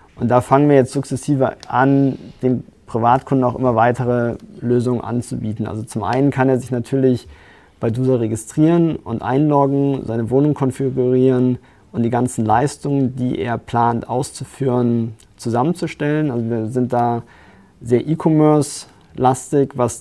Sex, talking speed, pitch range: male, 135 wpm, 115-140 Hz